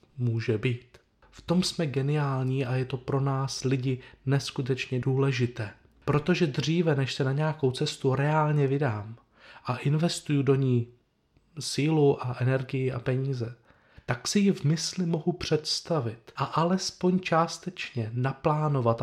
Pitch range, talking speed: 120-150 Hz, 135 wpm